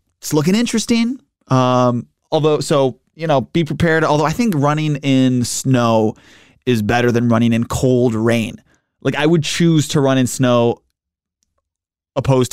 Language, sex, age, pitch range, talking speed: English, male, 20-39, 120-145 Hz, 155 wpm